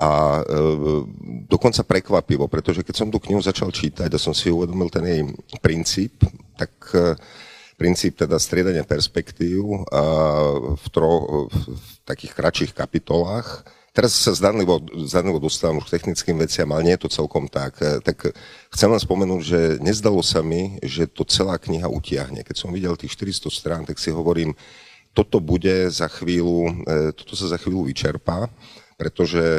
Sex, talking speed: male, 150 wpm